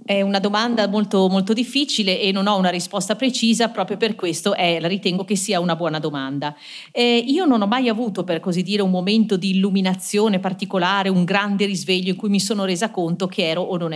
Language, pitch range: Italian, 175-235 Hz